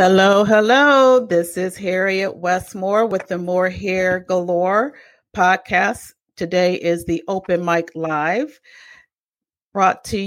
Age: 40-59